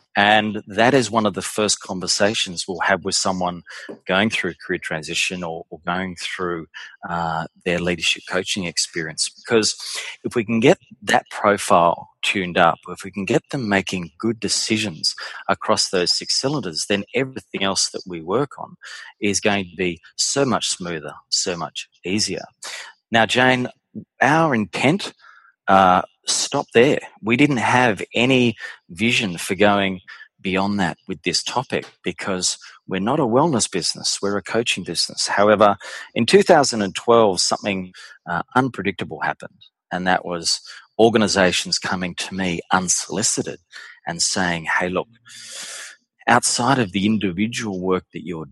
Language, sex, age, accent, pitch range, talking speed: English, male, 30-49, Australian, 90-110 Hz, 145 wpm